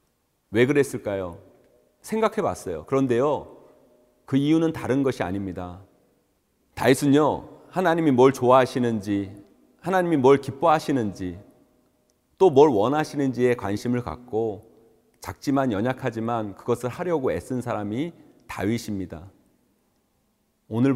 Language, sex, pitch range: Korean, male, 110-150 Hz